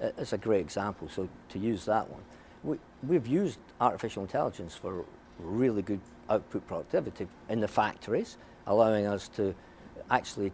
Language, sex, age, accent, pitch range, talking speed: English, male, 50-69, British, 90-110 Hz, 150 wpm